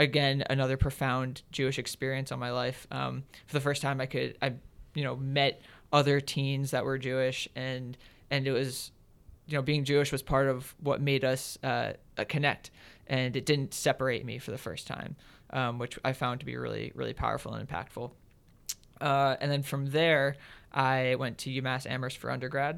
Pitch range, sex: 125-140 Hz, male